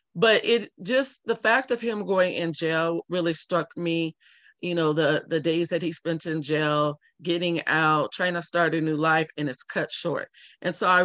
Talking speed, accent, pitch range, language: 205 wpm, American, 155-180 Hz, English